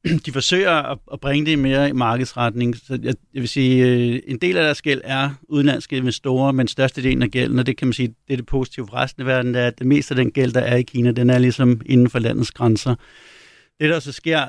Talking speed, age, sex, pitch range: 265 wpm, 60-79, male, 125-140 Hz